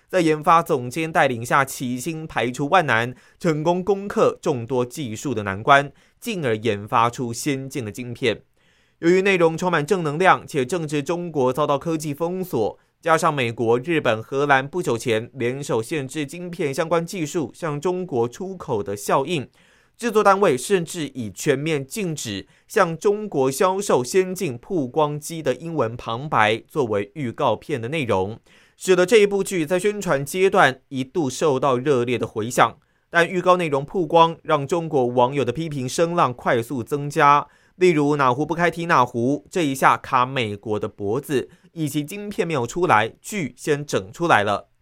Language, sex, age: Chinese, male, 30-49